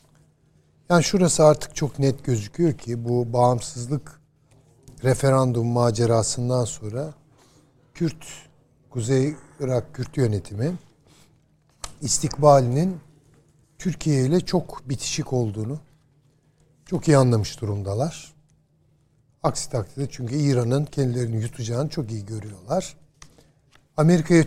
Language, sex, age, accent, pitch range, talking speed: Turkish, male, 60-79, native, 125-155 Hz, 90 wpm